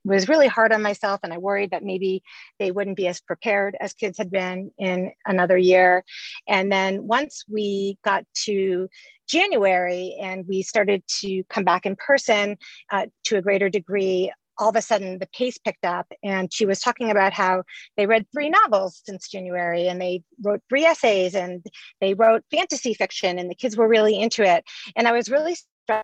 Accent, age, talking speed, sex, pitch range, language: American, 40-59, 195 wpm, female, 185-225 Hz, English